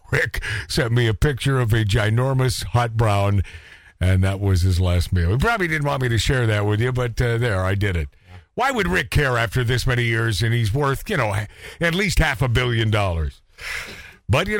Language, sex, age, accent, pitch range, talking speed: English, male, 50-69, American, 130-200 Hz, 220 wpm